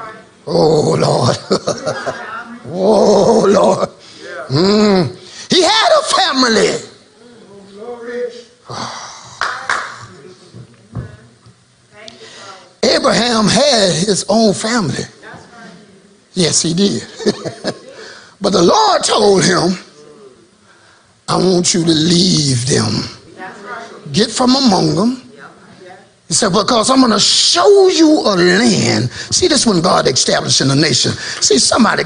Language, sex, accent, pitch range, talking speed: English, male, American, 185-255 Hz, 95 wpm